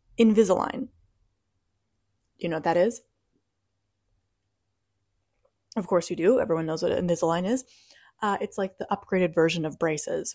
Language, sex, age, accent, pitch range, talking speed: English, female, 20-39, American, 155-205 Hz, 135 wpm